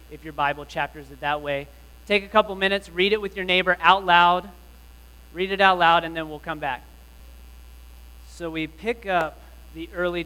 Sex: male